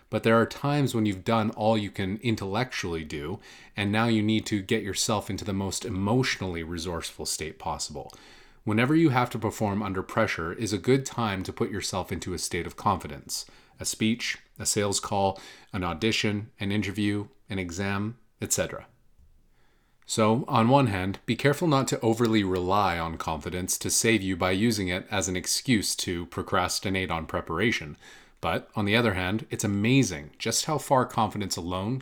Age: 30-49